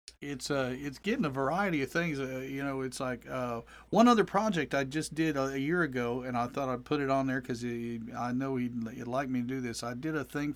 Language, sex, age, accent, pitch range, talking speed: English, male, 50-69, American, 130-150 Hz, 275 wpm